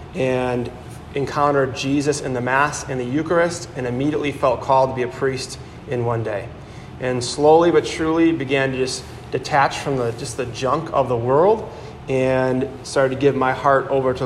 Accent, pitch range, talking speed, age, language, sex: American, 125-145 Hz, 185 wpm, 30-49, English, male